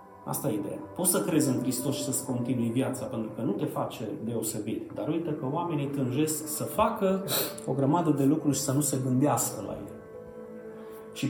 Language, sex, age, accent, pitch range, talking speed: Romanian, male, 30-49, native, 140-195 Hz, 190 wpm